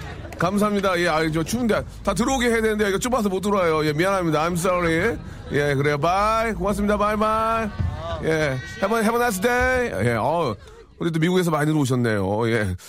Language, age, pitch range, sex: Korean, 40-59, 115-190 Hz, male